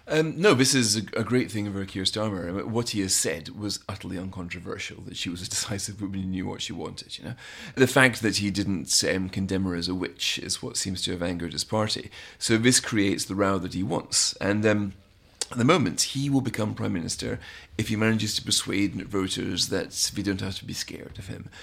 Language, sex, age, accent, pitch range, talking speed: English, male, 30-49, British, 95-115 Hz, 230 wpm